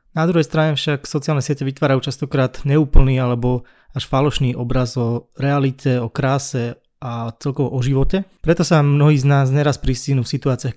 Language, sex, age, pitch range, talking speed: Slovak, male, 20-39, 125-145 Hz, 165 wpm